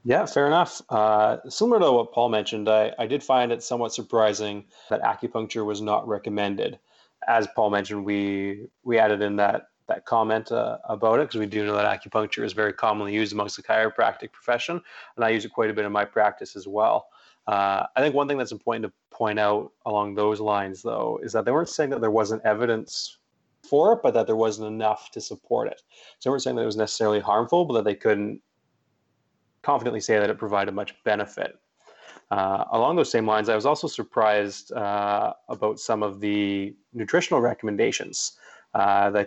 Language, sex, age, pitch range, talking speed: English, male, 30-49, 105-110 Hz, 200 wpm